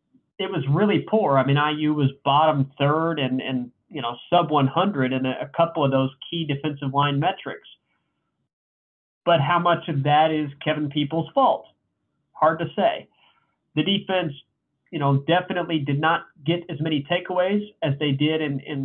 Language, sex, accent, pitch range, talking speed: English, male, American, 140-165 Hz, 170 wpm